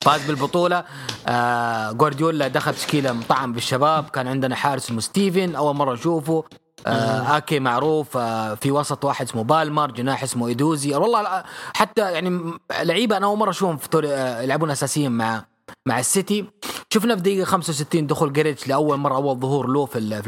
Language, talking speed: English, 150 wpm